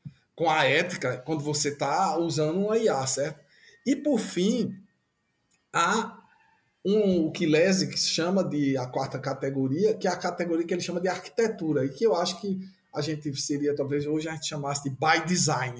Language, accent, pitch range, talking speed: Portuguese, Brazilian, 145-190 Hz, 185 wpm